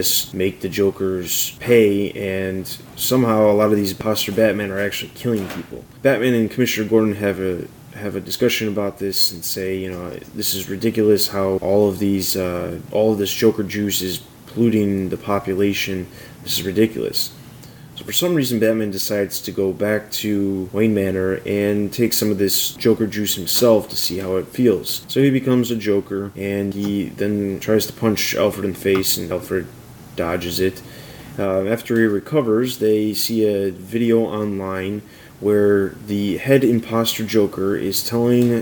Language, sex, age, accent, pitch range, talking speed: English, male, 20-39, American, 100-115 Hz, 170 wpm